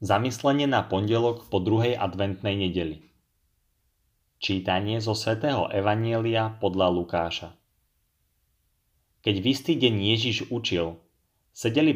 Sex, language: male, Slovak